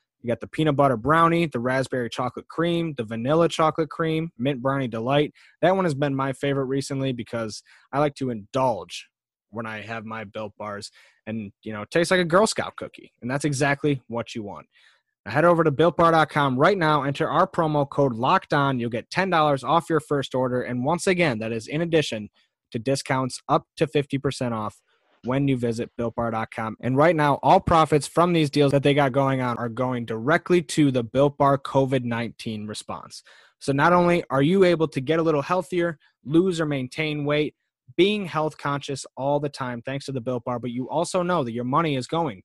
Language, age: English, 20-39